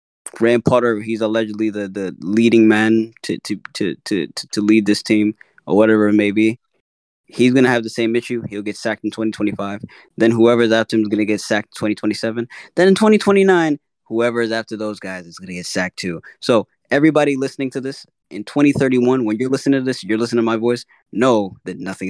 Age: 20-39